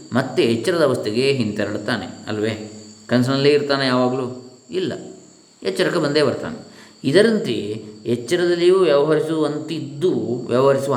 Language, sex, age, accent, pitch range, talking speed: Kannada, male, 20-39, native, 115-155 Hz, 90 wpm